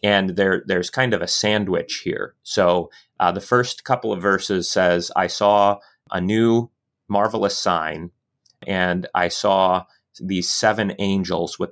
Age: 30-49